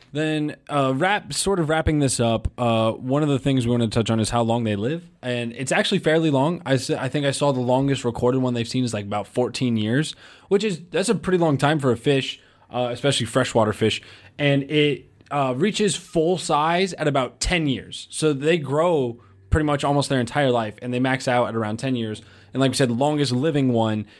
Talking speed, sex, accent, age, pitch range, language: 230 wpm, male, American, 20-39, 120-155 Hz, English